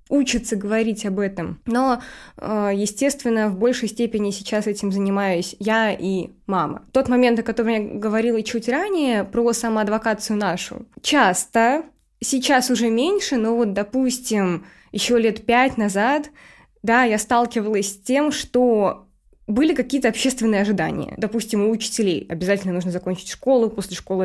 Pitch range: 195-240 Hz